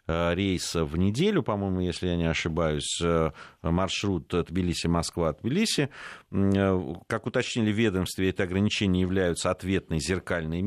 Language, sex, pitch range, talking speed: Russian, male, 85-110 Hz, 125 wpm